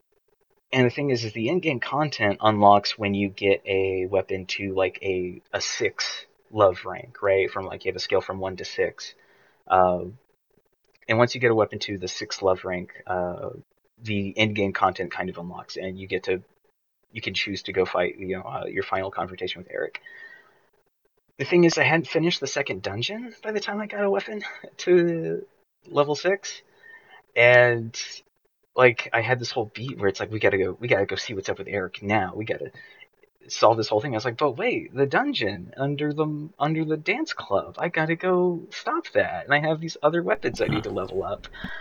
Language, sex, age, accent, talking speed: English, male, 30-49, American, 210 wpm